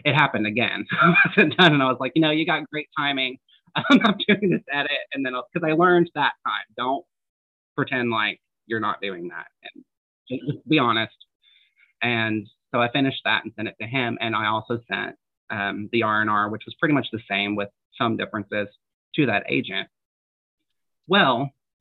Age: 30-49